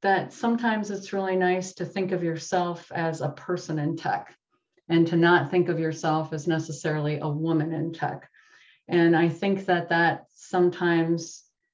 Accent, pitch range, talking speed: American, 155-175 Hz, 165 wpm